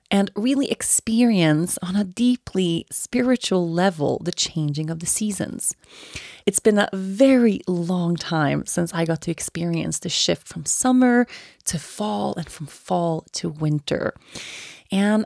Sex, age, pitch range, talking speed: female, 30-49, 160-220 Hz, 140 wpm